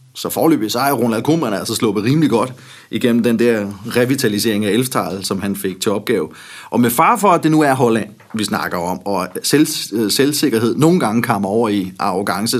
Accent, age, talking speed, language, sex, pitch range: native, 30-49, 210 wpm, Danish, male, 105-125 Hz